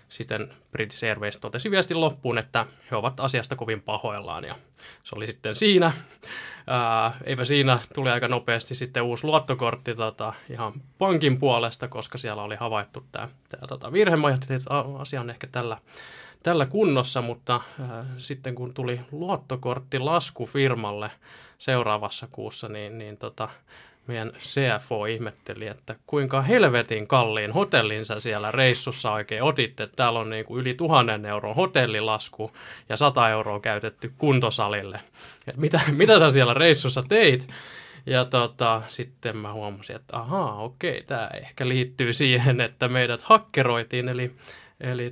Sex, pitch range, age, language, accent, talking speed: male, 115-135 Hz, 20-39, Finnish, native, 140 wpm